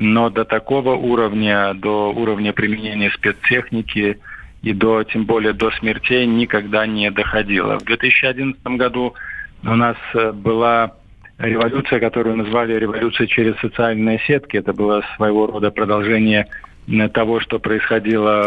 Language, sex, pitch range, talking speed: Russian, male, 105-115 Hz, 125 wpm